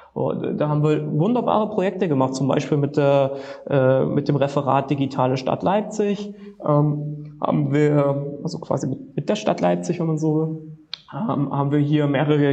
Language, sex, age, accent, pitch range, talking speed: German, male, 20-39, German, 140-160 Hz, 170 wpm